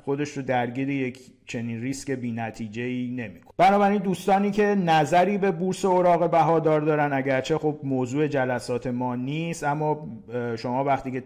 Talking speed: 150 wpm